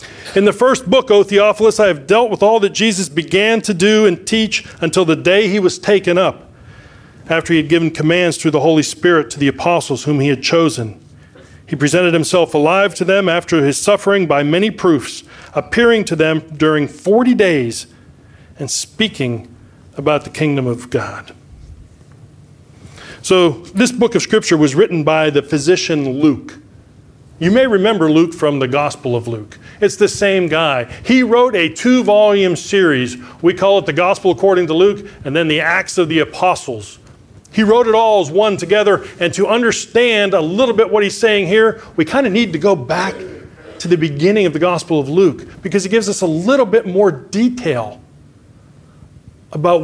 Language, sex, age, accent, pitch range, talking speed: English, male, 40-59, American, 150-205 Hz, 185 wpm